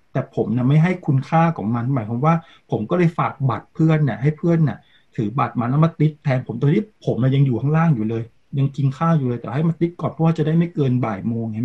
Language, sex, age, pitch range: Thai, male, 20-39, 130-160 Hz